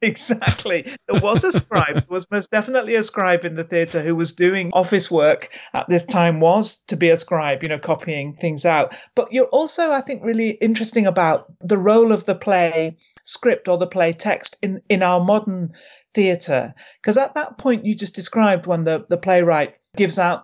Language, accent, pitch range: English, British, 155-200 Hz